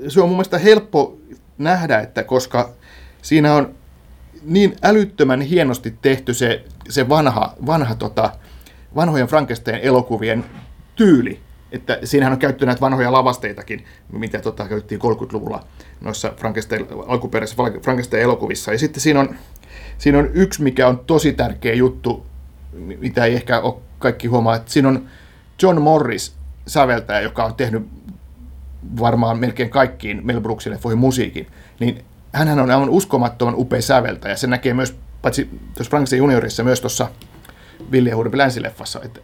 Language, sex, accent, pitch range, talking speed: Finnish, male, native, 115-140 Hz, 130 wpm